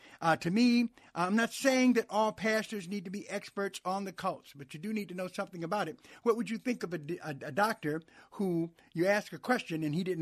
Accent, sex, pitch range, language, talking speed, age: American, male, 155-205 Hz, English, 245 wpm, 60-79